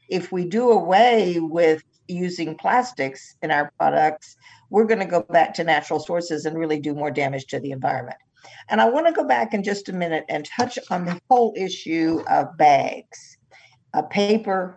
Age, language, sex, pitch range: 50-69, English, female, 150-195 Hz